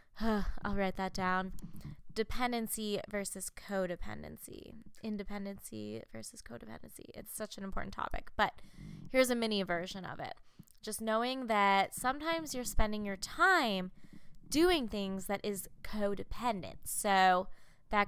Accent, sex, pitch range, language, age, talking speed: American, female, 190-275 Hz, English, 20-39, 125 wpm